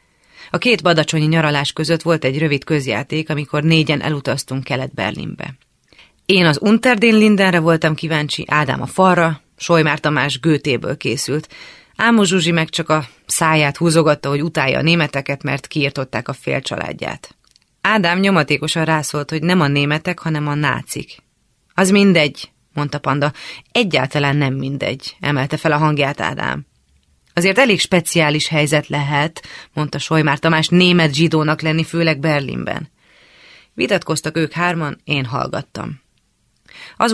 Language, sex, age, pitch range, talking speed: Hungarian, female, 30-49, 145-170 Hz, 135 wpm